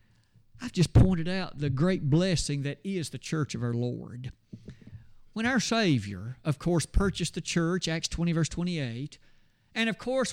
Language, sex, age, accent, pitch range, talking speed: English, male, 50-69, American, 120-190 Hz, 170 wpm